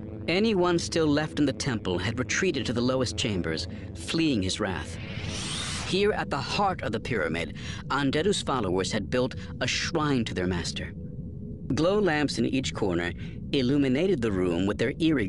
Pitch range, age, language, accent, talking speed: 100-145 Hz, 50-69, English, American, 165 wpm